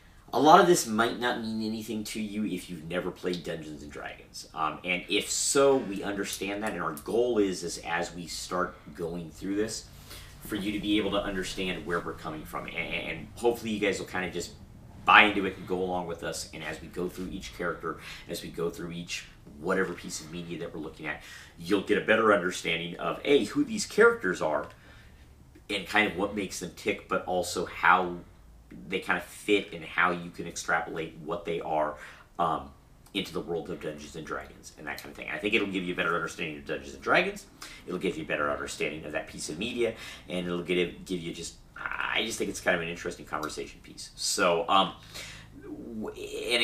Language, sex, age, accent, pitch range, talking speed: English, male, 40-59, American, 80-105 Hz, 215 wpm